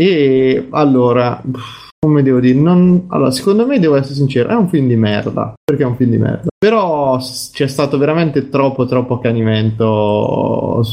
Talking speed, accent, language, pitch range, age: 170 wpm, native, Italian, 120-150 Hz, 20-39